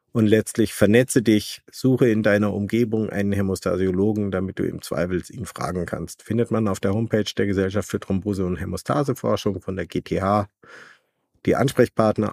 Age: 50-69